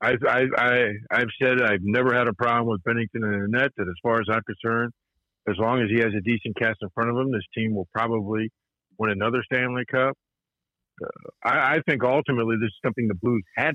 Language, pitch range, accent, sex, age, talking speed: English, 110-140 Hz, American, male, 50-69, 215 wpm